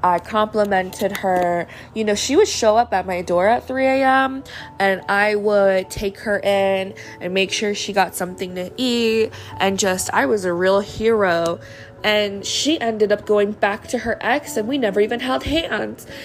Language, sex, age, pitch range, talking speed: English, female, 20-39, 185-225 Hz, 190 wpm